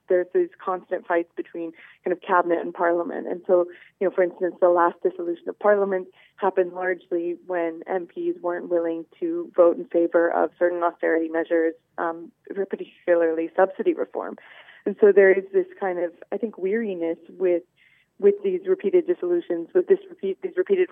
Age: 20-39